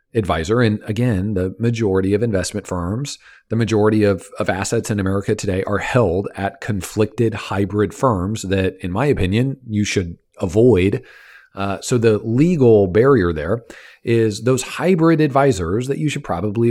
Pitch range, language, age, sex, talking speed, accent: 100-135 Hz, English, 40-59, male, 155 wpm, American